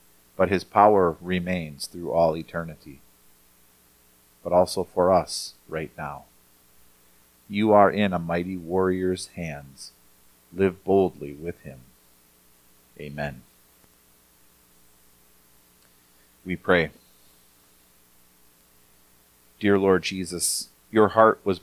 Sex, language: male, English